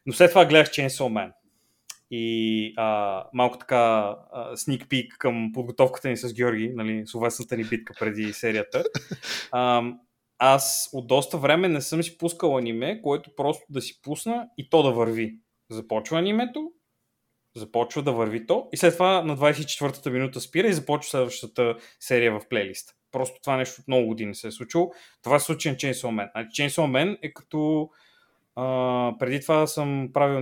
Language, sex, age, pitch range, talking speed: Bulgarian, male, 20-39, 120-155 Hz, 165 wpm